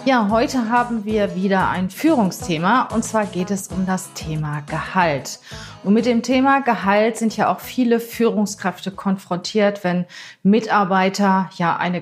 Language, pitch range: German, 180-225 Hz